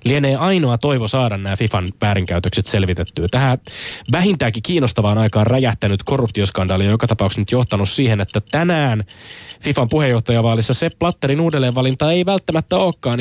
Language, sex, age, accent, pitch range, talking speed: Finnish, male, 20-39, native, 105-140 Hz, 135 wpm